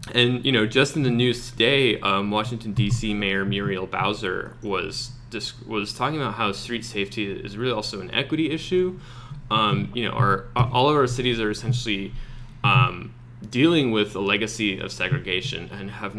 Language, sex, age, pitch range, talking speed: English, male, 20-39, 105-125 Hz, 175 wpm